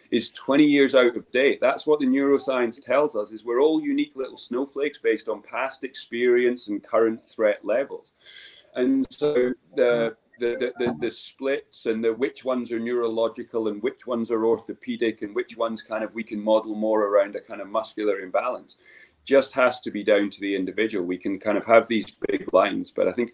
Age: 30-49